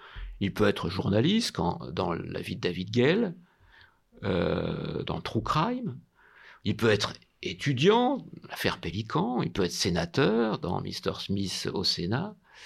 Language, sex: French, male